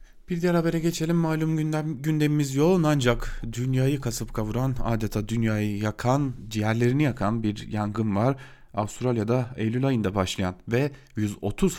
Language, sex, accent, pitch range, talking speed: German, male, Turkish, 105-135 Hz, 130 wpm